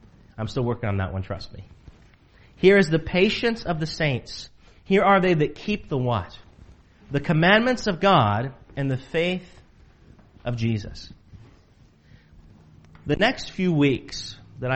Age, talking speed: 40-59, 145 wpm